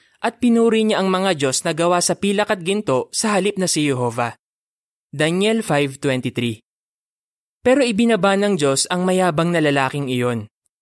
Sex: male